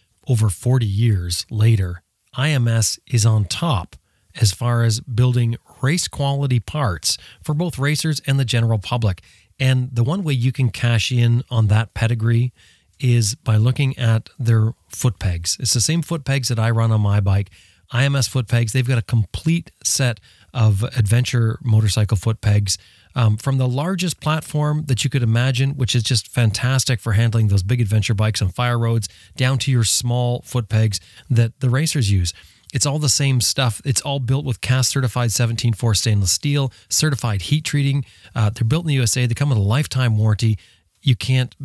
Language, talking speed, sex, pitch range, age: English, 185 wpm, male, 105-130 Hz, 30-49